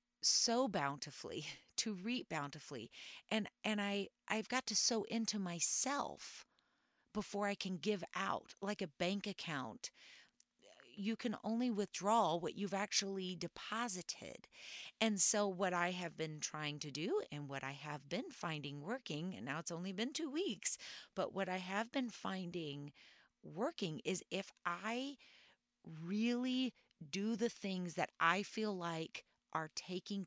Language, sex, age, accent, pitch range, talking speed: English, female, 40-59, American, 150-210 Hz, 145 wpm